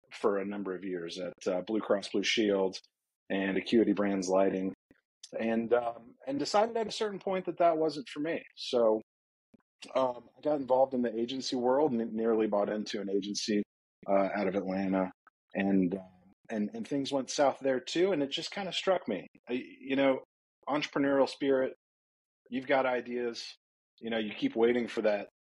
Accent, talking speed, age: American, 180 wpm, 30-49